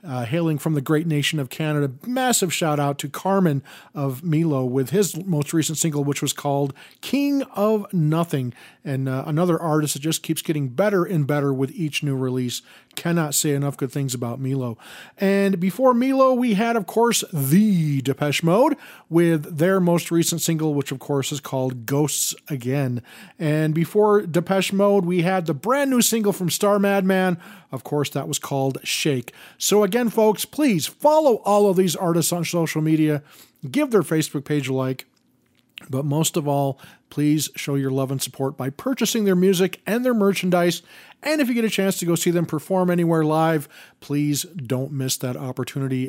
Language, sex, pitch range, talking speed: Hebrew, male, 140-195 Hz, 185 wpm